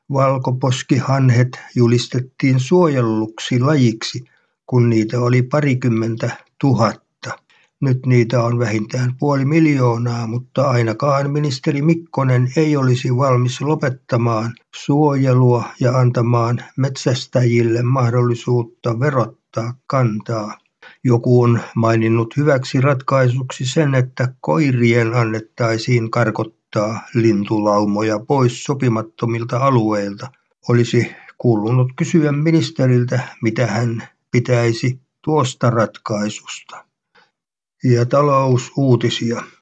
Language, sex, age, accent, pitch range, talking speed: Finnish, male, 50-69, native, 115-135 Hz, 85 wpm